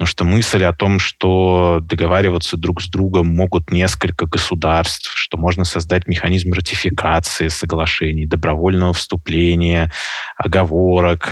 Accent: native